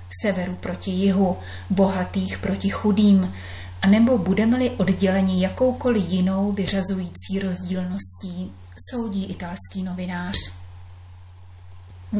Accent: native